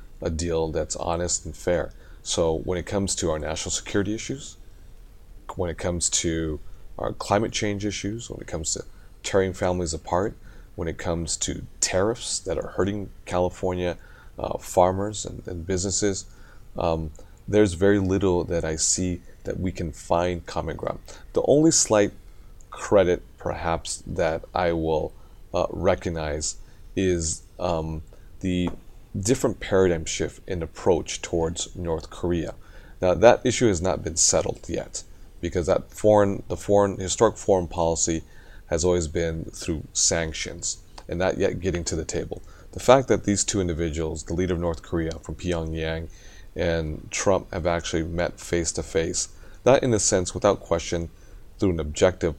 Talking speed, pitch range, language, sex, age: 155 wpm, 80-95 Hz, English, male, 30-49